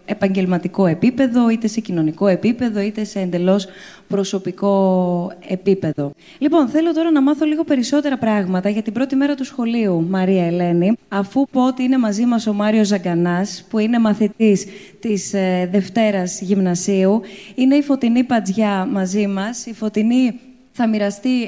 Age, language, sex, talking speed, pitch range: 20-39, Greek, female, 145 wpm, 190-230 Hz